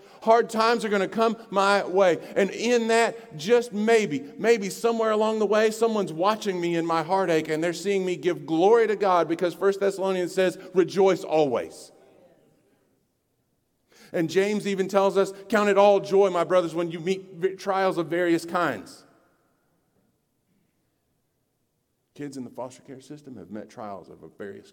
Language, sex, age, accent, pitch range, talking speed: English, male, 50-69, American, 120-195 Hz, 165 wpm